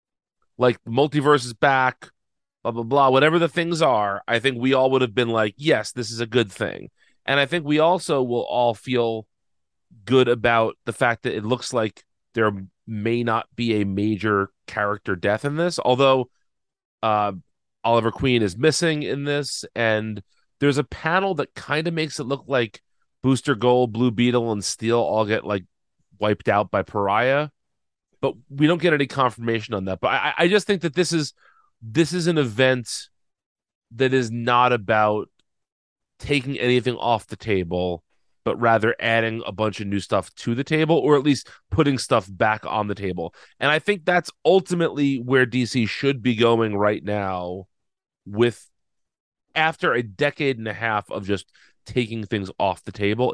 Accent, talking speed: American, 180 wpm